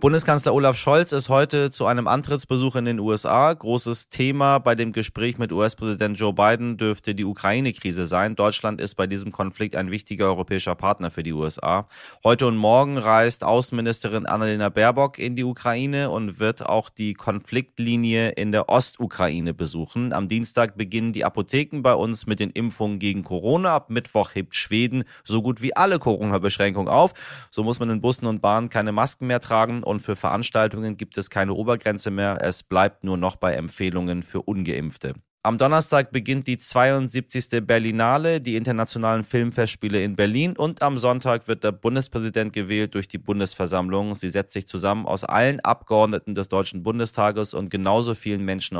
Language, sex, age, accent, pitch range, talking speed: German, male, 30-49, German, 100-120 Hz, 170 wpm